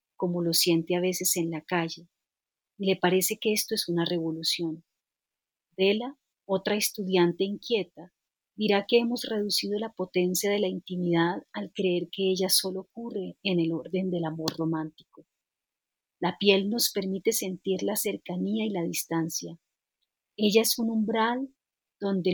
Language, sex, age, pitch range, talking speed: Spanish, female, 40-59, 170-205 Hz, 150 wpm